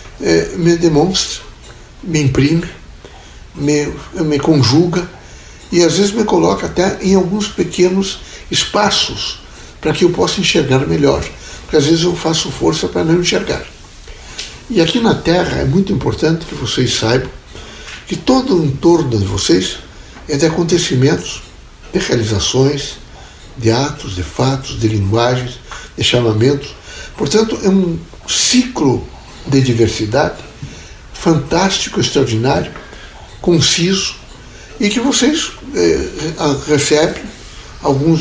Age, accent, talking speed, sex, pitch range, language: 60-79, Brazilian, 120 wpm, male, 130-175 Hz, Portuguese